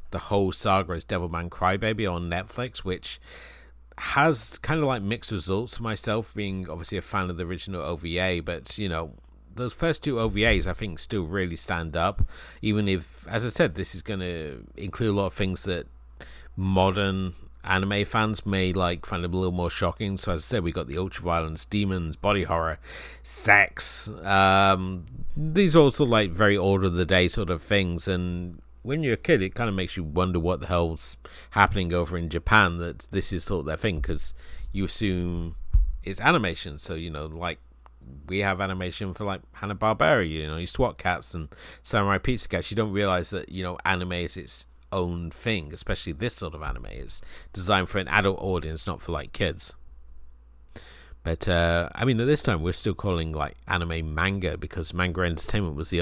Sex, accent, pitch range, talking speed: male, British, 85-100 Hz, 195 wpm